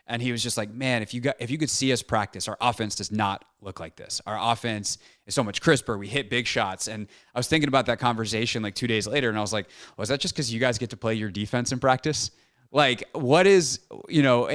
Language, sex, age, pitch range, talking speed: English, male, 20-39, 110-140 Hz, 270 wpm